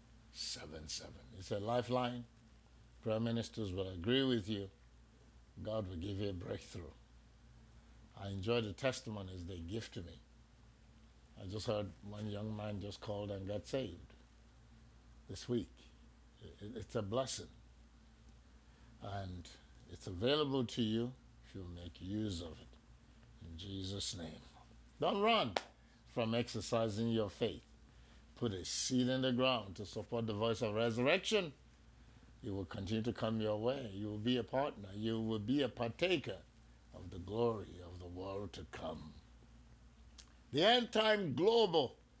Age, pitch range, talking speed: 60-79, 95-120 Hz, 140 wpm